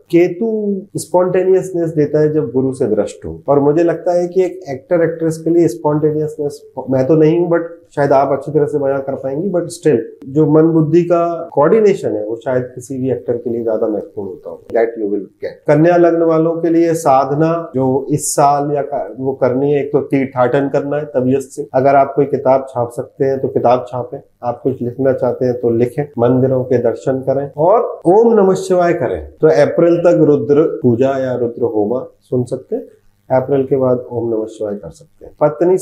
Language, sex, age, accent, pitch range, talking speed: Hindi, male, 30-49, native, 135-175 Hz, 175 wpm